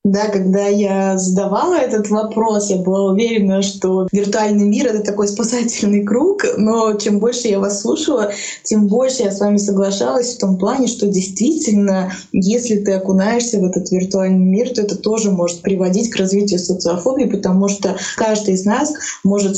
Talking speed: 165 wpm